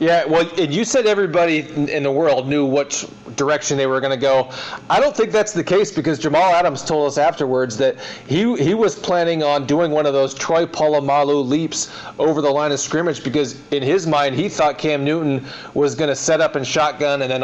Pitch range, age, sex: 130-150 Hz, 40-59, male